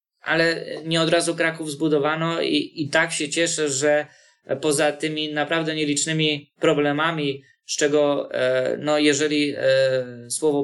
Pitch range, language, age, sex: 135-155 Hz, Polish, 20-39, male